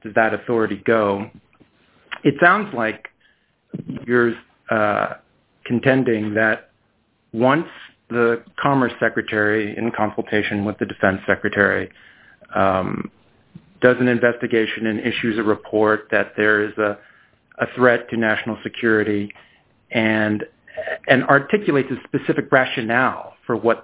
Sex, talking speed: male, 115 wpm